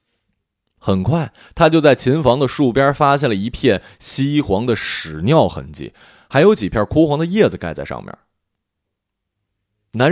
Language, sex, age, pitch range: Chinese, male, 30-49, 95-155 Hz